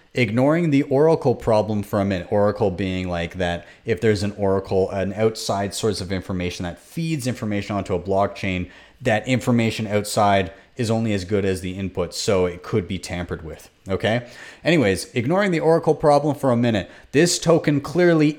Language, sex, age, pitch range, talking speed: English, male, 30-49, 95-145 Hz, 175 wpm